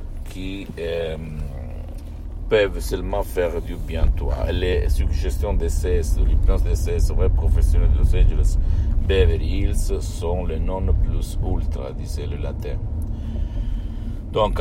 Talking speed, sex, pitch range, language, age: 130 wpm, male, 75-90 Hz, Italian, 60-79